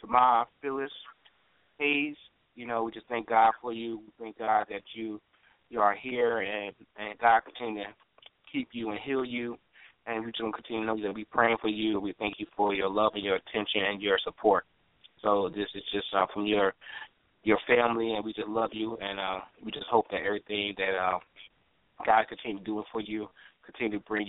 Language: English